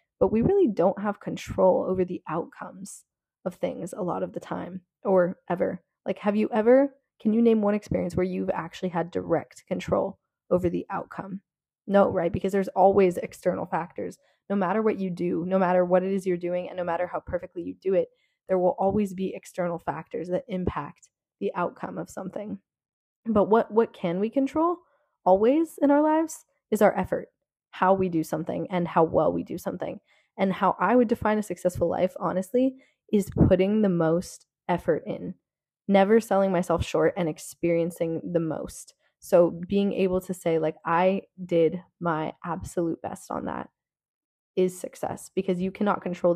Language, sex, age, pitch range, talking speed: English, female, 20-39, 175-210 Hz, 180 wpm